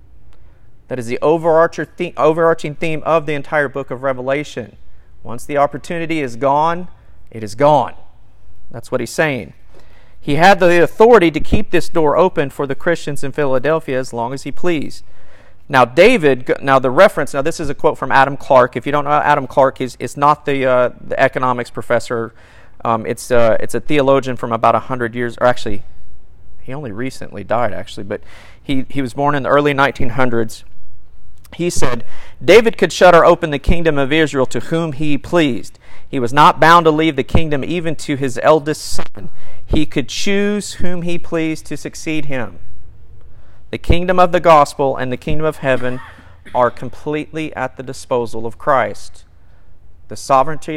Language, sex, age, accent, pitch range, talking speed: English, male, 40-59, American, 115-155 Hz, 180 wpm